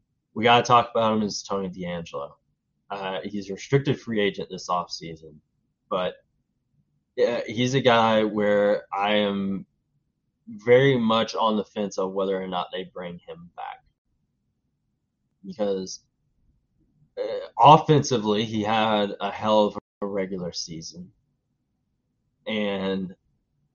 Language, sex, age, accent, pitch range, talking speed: English, male, 20-39, American, 95-115 Hz, 125 wpm